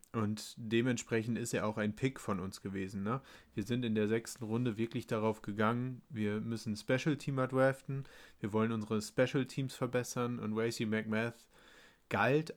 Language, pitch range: German, 110-125 Hz